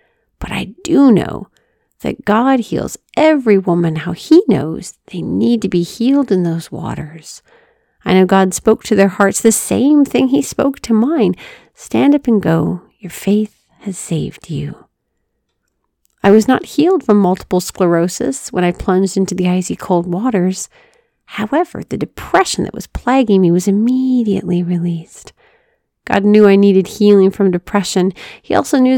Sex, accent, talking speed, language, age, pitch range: female, American, 160 wpm, English, 40-59, 185-255 Hz